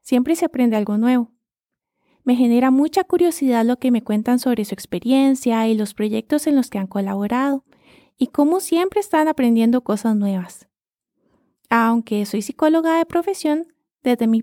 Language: Spanish